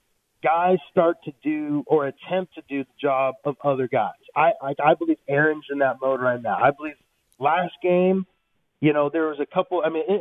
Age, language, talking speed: 40-59, English, 205 wpm